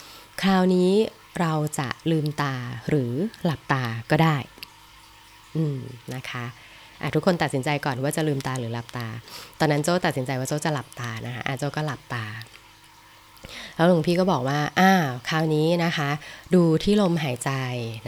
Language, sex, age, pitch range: Thai, female, 20-39, 130-165 Hz